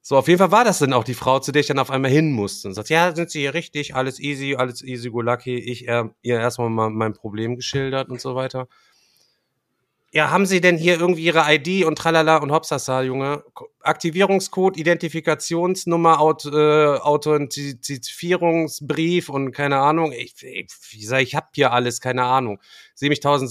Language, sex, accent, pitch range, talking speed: German, male, German, 125-155 Hz, 200 wpm